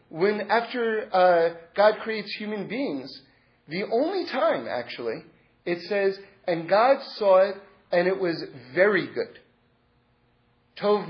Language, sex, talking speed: English, male, 125 wpm